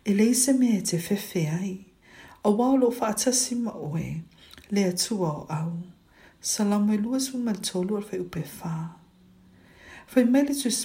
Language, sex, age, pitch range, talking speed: English, female, 60-79, 165-225 Hz, 75 wpm